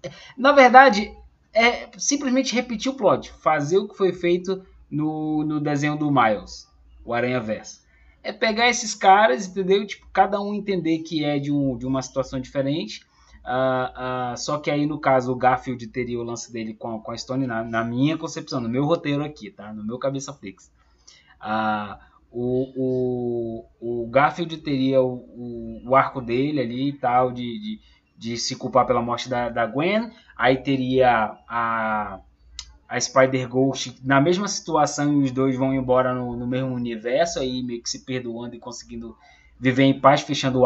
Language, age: Portuguese, 20-39